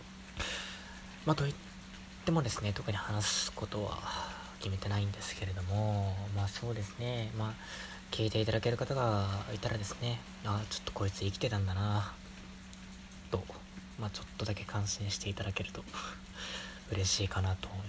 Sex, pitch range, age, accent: male, 95-105 Hz, 20-39, native